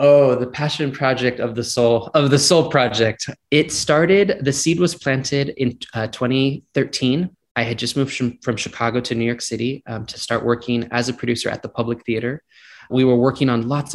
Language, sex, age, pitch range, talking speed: English, male, 20-39, 120-150 Hz, 200 wpm